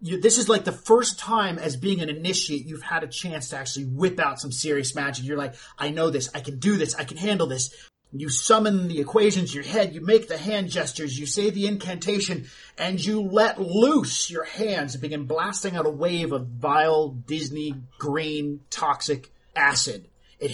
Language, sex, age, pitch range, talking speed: English, male, 30-49, 150-200 Hz, 200 wpm